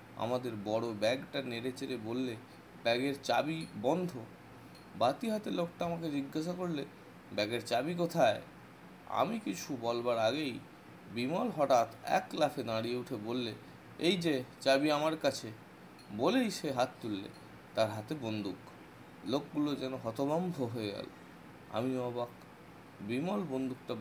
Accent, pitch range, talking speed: native, 115-165 Hz, 105 wpm